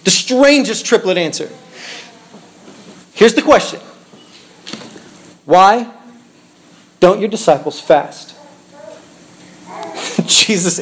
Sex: male